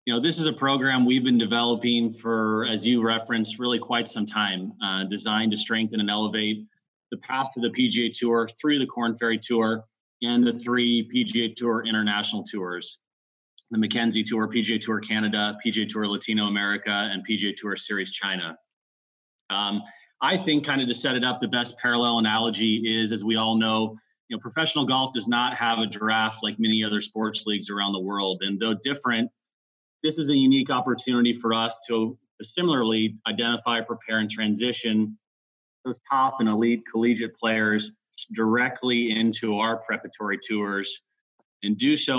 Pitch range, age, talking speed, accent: 110-120 Hz, 30-49, 170 wpm, American